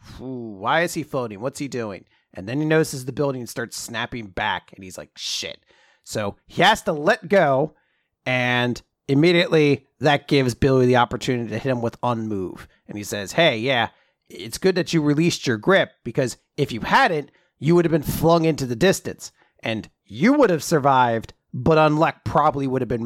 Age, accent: 30-49, American